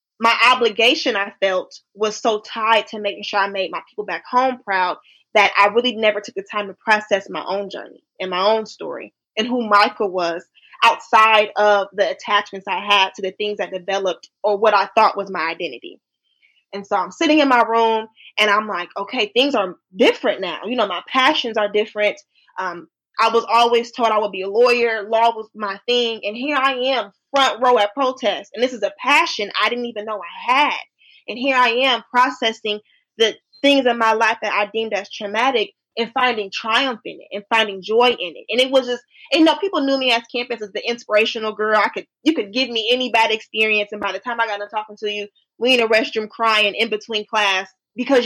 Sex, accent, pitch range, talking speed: female, American, 205-245 Hz, 220 wpm